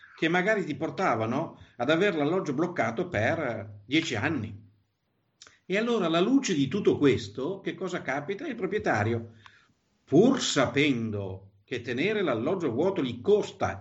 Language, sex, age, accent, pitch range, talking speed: Italian, male, 50-69, native, 110-165 Hz, 135 wpm